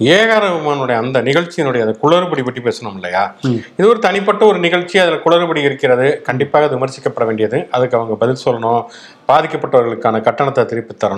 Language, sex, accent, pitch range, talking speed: English, male, Indian, 130-185 Hz, 140 wpm